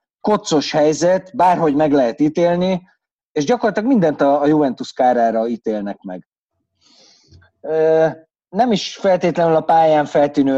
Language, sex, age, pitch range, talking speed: Hungarian, male, 30-49, 130-175 Hz, 115 wpm